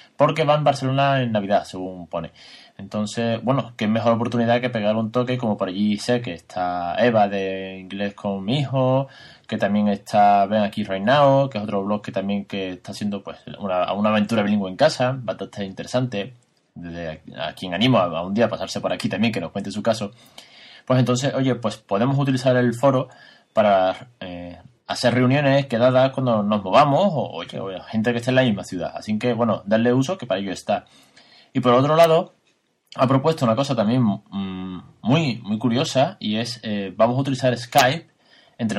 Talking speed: 195 wpm